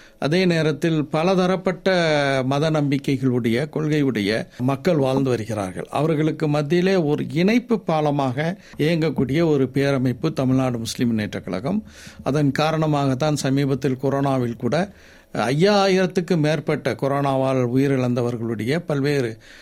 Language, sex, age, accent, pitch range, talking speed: Tamil, male, 60-79, native, 135-170 Hz, 95 wpm